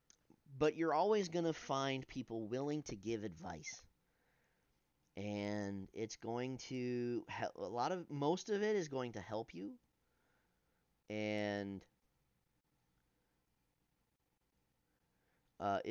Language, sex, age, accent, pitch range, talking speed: English, male, 30-49, American, 100-150 Hz, 110 wpm